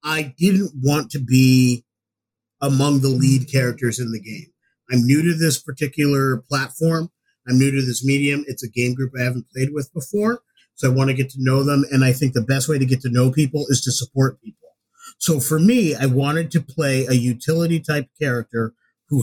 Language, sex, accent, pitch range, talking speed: English, male, American, 125-155 Hz, 210 wpm